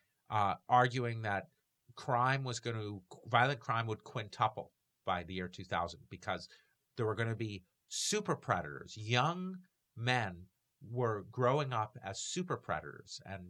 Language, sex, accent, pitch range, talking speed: English, male, American, 110-150 Hz, 140 wpm